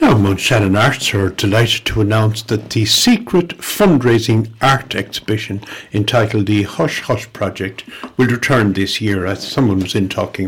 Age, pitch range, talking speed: 60-79, 100-130 Hz, 155 wpm